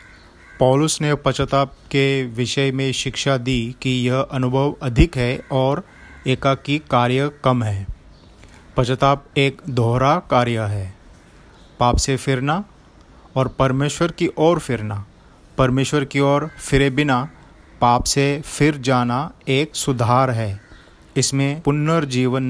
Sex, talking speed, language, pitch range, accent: male, 120 wpm, Hindi, 120-140 Hz, native